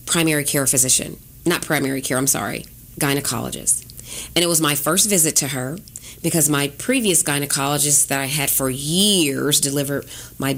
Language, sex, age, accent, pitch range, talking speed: English, female, 30-49, American, 150-205 Hz, 160 wpm